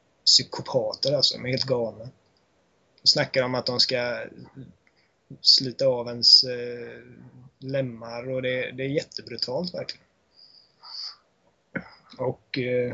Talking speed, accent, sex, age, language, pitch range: 105 wpm, native, male, 20-39, Swedish, 125-145 Hz